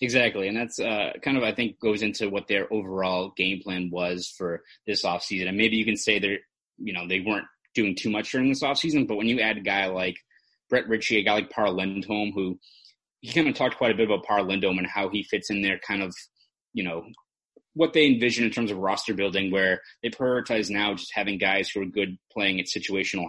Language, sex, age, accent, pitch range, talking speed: English, male, 20-39, American, 95-110 Hz, 235 wpm